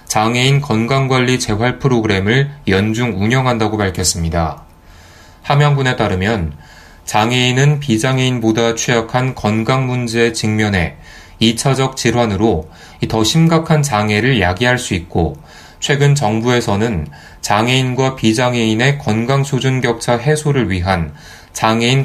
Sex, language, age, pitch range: male, Korean, 20-39, 100-130 Hz